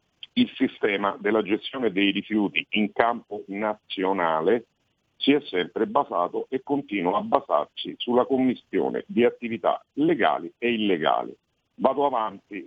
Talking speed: 125 wpm